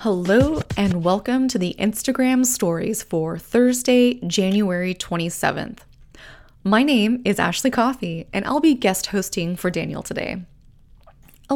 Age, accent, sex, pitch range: 20-39, American, female, 175-245 Hz